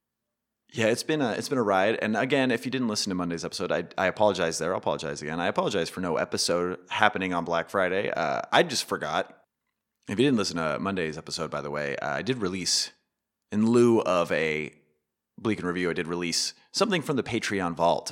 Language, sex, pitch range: English, male, 85-105 Hz